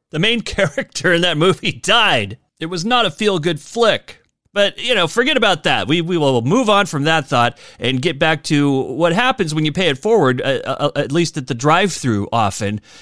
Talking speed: 210 wpm